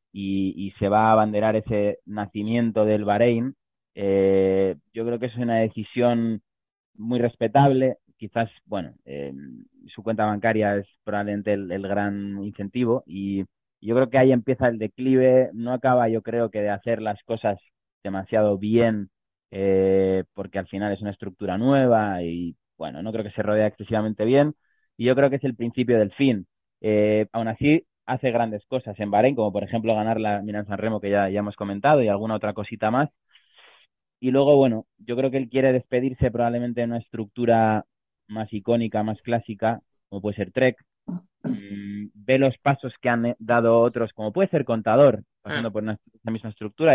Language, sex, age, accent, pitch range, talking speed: Spanish, male, 20-39, Spanish, 100-120 Hz, 180 wpm